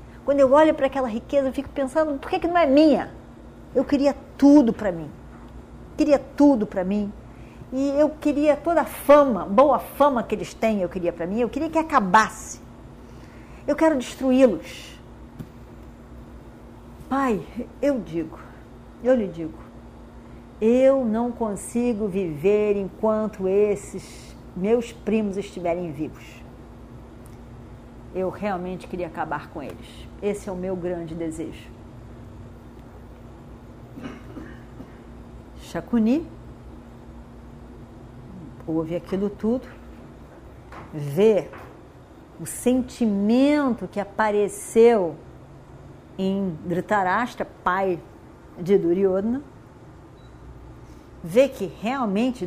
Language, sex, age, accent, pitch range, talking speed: Portuguese, female, 50-69, Brazilian, 175-260 Hz, 105 wpm